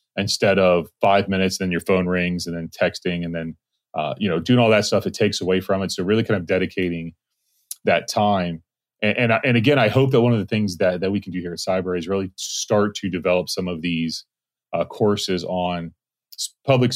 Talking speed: 225 wpm